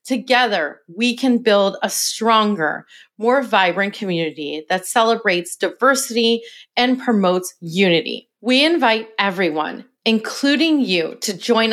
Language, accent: English, American